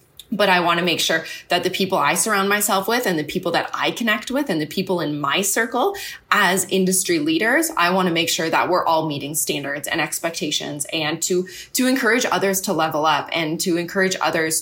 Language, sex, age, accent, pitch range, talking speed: English, female, 20-39, American, 160-200 Hz, 220 wpm